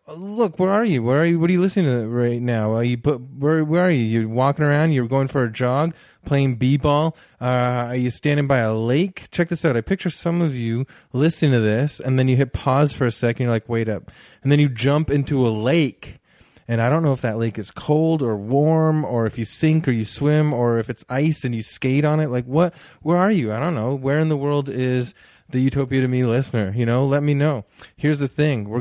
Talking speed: 255 wpm